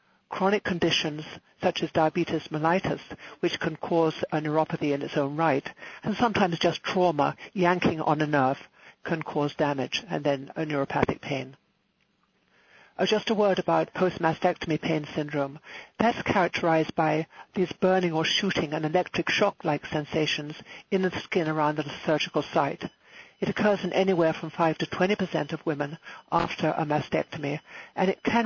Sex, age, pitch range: male, 60-79, 155-185 Hz